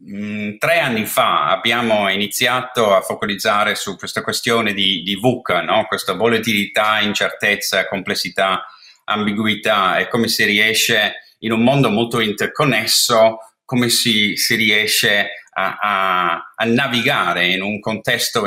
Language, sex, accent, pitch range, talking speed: Italian, male, native, 110-140 Hz, 125 wpm